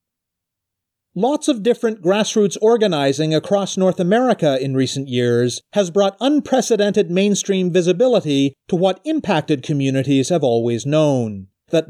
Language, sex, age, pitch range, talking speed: English, male, 40-59, 145-210 Hz, 120 wpm